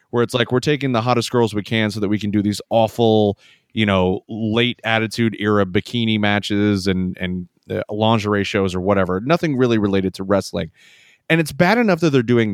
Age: 30-49